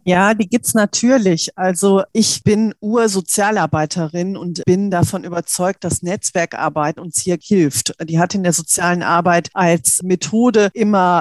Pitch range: 170-210 Hz